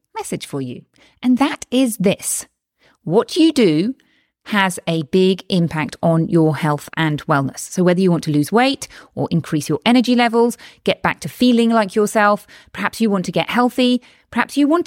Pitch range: 180-245 Hz